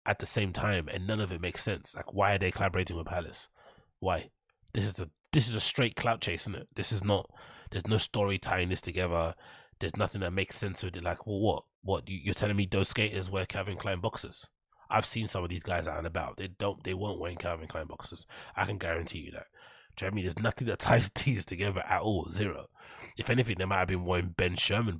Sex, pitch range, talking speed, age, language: male, 85-105 Hz, 250 wpm, 20-39, English